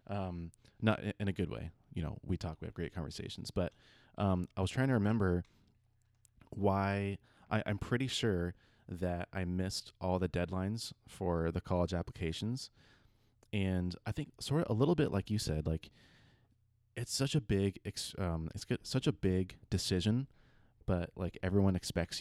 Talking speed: 175 wpm